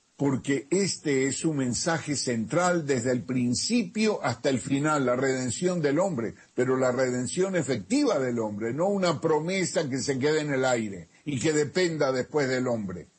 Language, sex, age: Spanish, male, 50-69